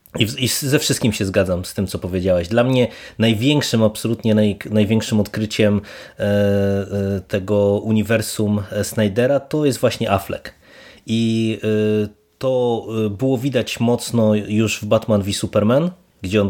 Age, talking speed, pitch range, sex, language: 20-39, 125 wpm, 105-115 Hz, male, Polish